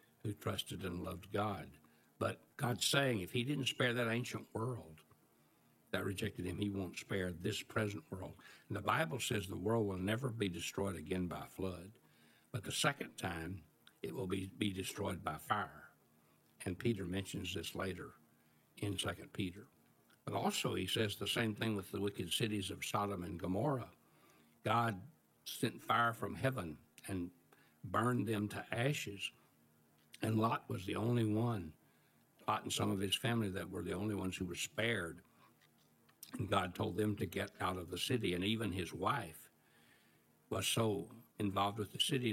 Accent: American